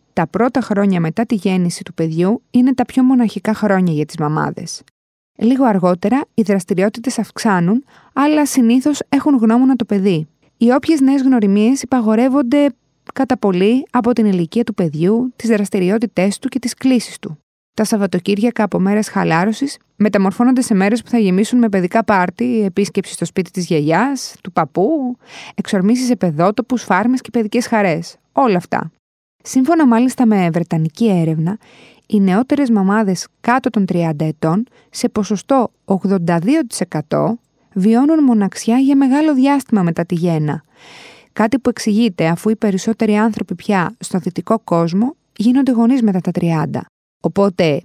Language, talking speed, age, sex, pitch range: Greek, 145 wpm, 20-39, female, 180-245 Hz